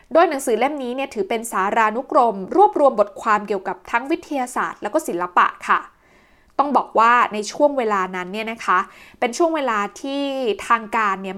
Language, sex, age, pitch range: Thai, female, 20-39, 210-295 Hz